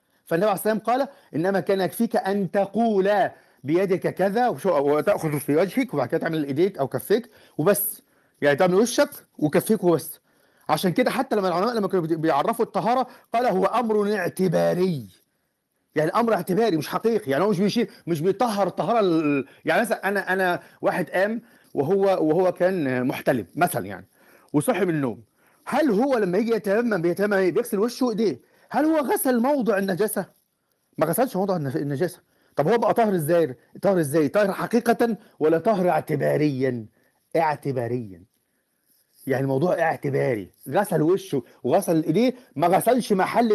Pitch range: 155-220 Hz